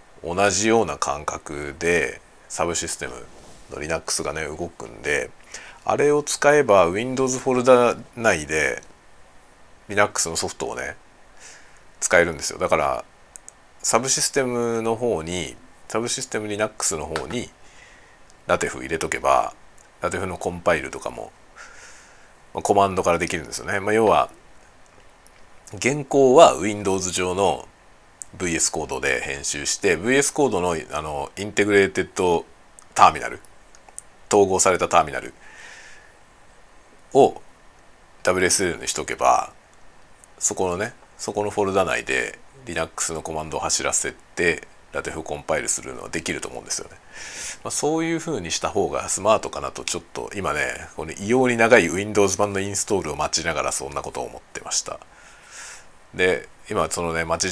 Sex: male